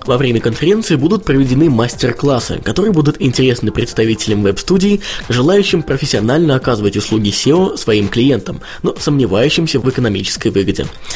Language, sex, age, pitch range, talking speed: Russian, male, 20-39, 105-155 Hz, 130 wpm